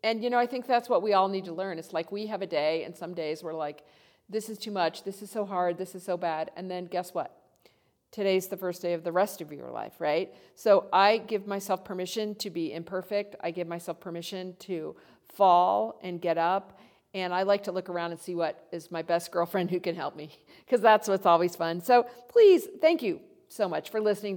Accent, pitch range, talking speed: American, 170-210 Hz, 240 wpm